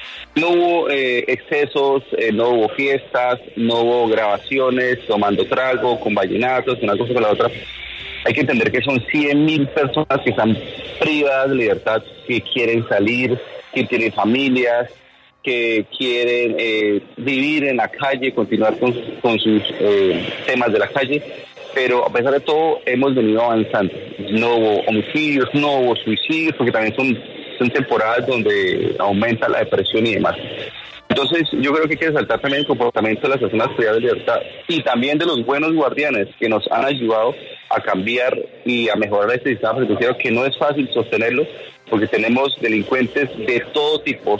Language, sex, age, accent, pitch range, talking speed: Spanish, male, 30-49, Venezuelan, 115-145 Hz, 170 wpm